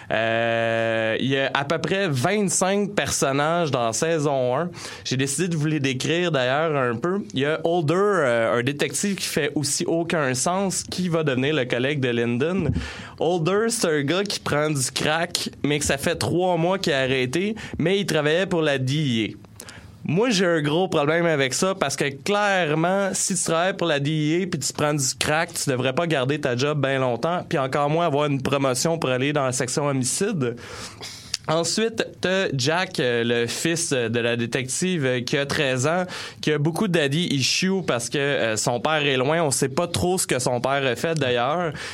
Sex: male